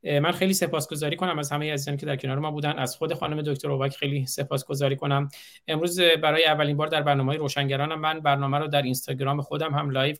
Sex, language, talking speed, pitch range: male, Persian, 205 wpm, 125-150 Hz